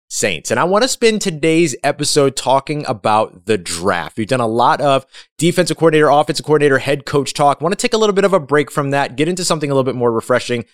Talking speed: 240 wpm